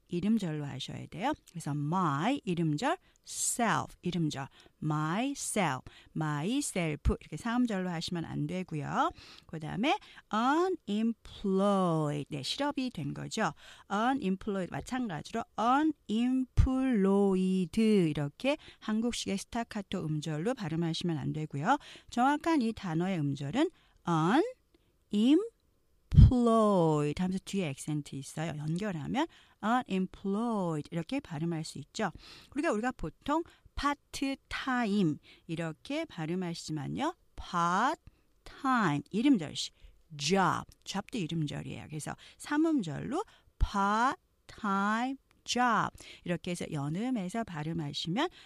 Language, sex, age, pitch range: Korean, female, 40-59, 160-260 Hz